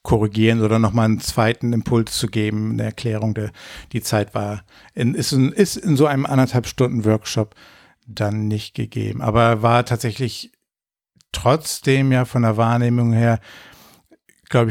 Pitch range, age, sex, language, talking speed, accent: 115-130 Hz, 60-79, male, German, 140 wpm, German